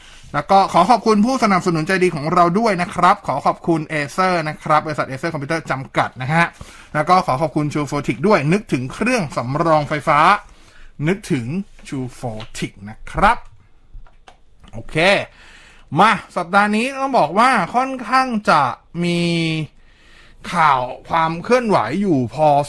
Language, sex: Thai, male